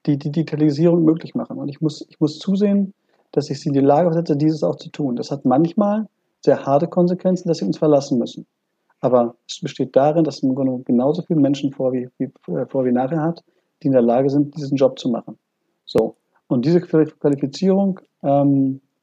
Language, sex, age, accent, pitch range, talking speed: German, male, 50-69, German, 140-170 Hz, 195 wpm